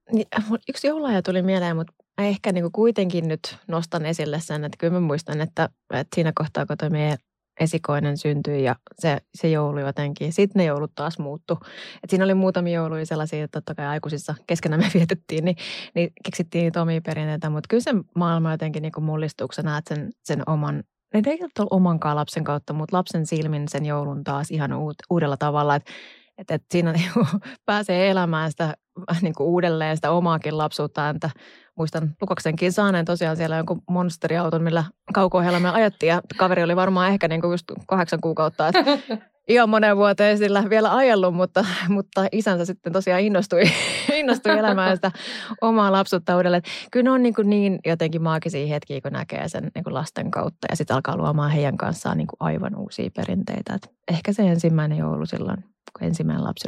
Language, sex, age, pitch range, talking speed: Finnish, female, 20-39, 155-195 Hz, 170 wpm